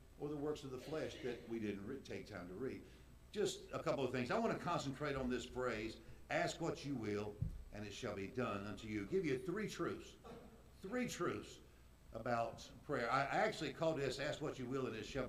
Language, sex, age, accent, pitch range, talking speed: English, male, 60-79, American, 120-165 Hz, 215 wpm